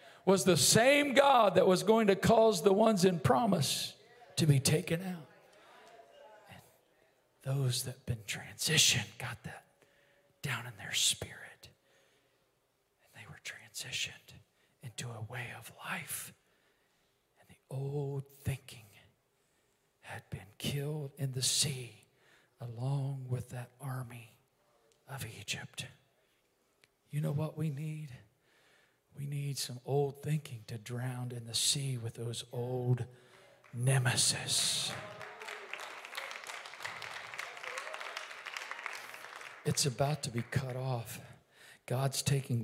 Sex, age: male, 40-59